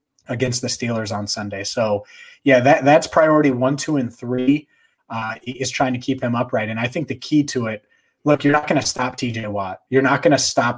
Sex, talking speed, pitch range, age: male, 230 wpm, 120-140 Hz, 30-49